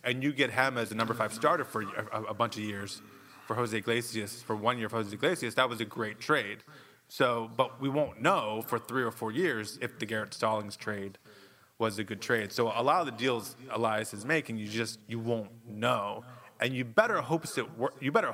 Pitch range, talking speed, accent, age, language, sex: 110-145 Hz, 225 wpm, American, 20-39, English, male